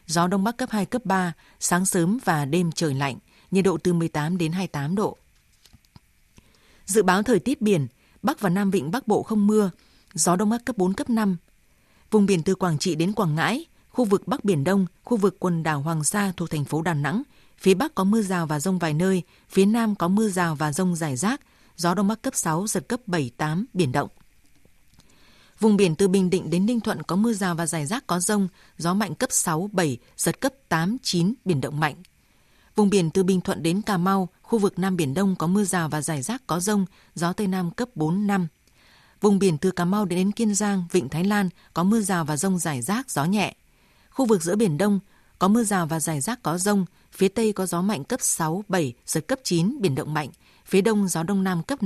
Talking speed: 235 wpm